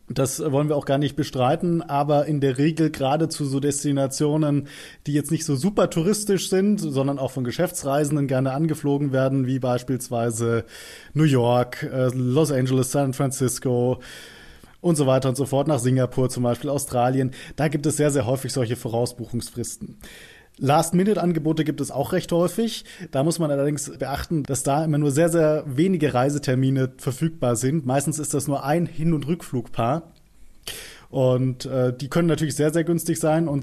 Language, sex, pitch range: German, male, 125-155 Hz